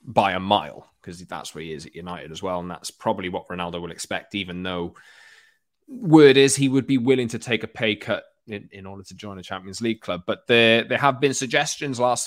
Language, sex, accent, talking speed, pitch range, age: English, male, British, 235 wpm, 95-140 Hz, 20-39